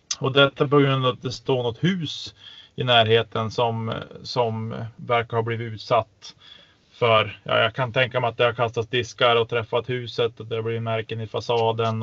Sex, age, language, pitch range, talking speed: male, 20-39, Swedish, 115-135 Hz, 200 wpm